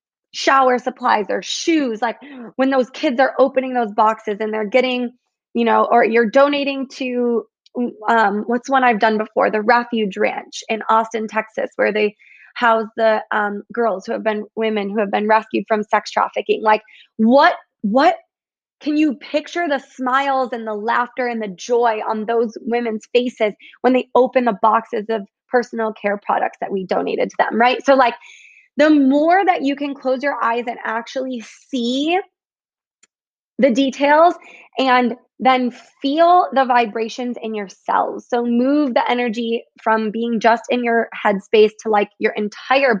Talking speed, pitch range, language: 165 wpm, 215-260 Hz, English